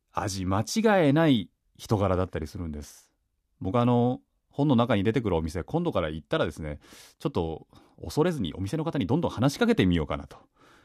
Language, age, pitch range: Japanese, 30-49, 90-150 Hz